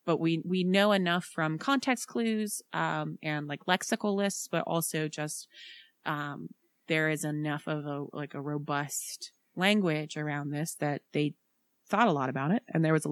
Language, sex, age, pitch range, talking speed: English, female, 30-49, 155-205 Hz, 180 wpm